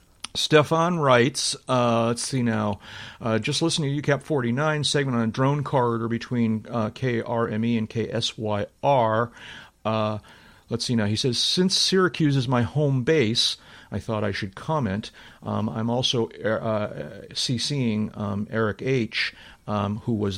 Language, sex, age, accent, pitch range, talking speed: English, male, 40-59, American, 105-130 Hz, 140 wpm